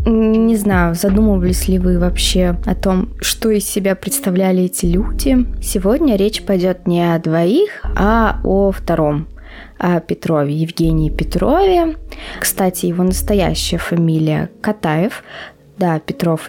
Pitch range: 175-225 Hz